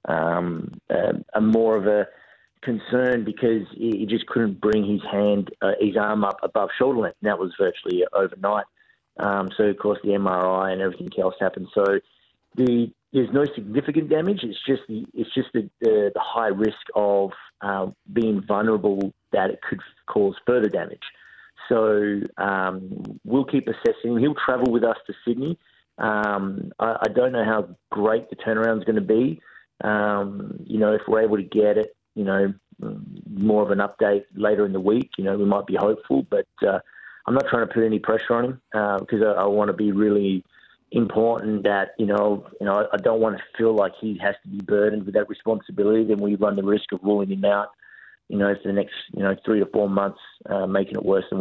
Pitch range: 100-115 Hz